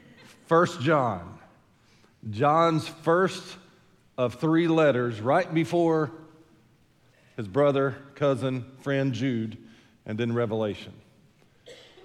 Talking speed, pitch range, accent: 85 wpm, 115-140 Hz, American